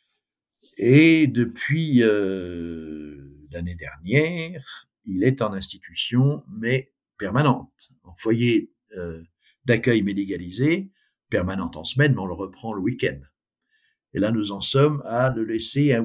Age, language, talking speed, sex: 60-79, French, 125 wpm, male